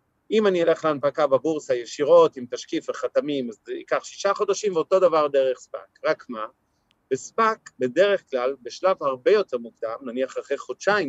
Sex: male